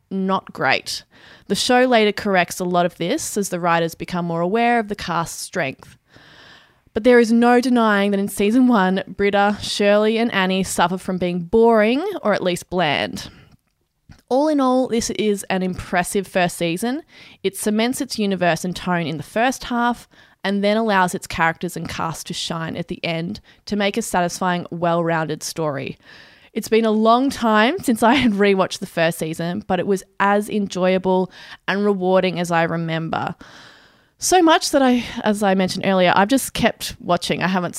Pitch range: 175-225 Hz